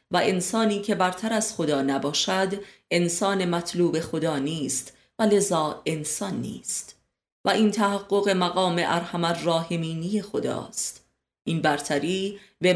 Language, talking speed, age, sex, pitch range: Persian, 120 wpm, 30-49, female, 160-200 Hz